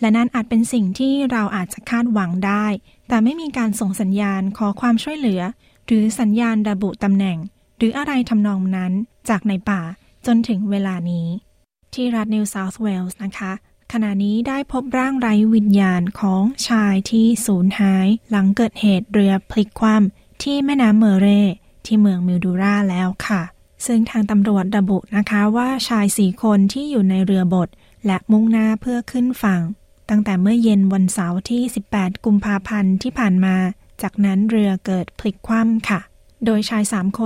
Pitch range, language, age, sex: 195-225 Hz, Thai, 20-39, female